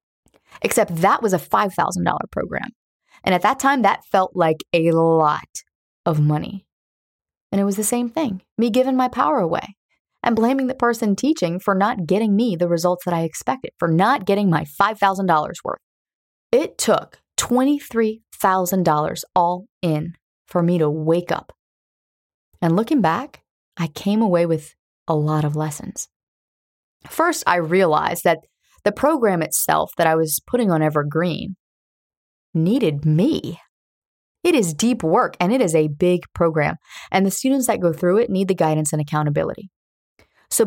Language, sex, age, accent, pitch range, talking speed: English, female, 20-39, American, 160-210 Hz, 160 wpm